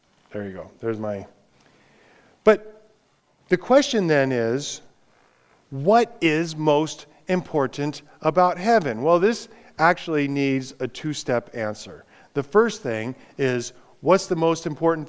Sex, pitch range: male, 135-185 Hz